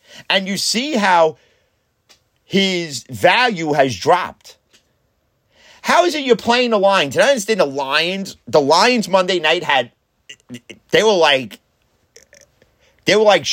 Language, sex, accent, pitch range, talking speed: English, male, American, 165-230 Hz, 135 wpm